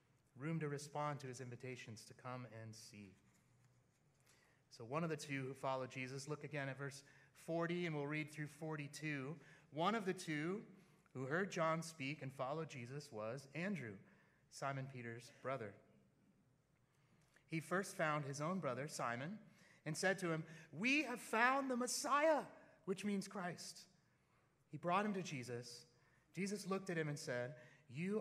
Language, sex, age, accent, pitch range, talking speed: English, male, 30-49, American, 135-175 Hz, 160 wpm